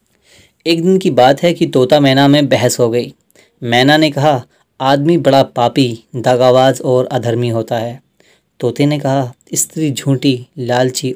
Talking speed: 155 wpm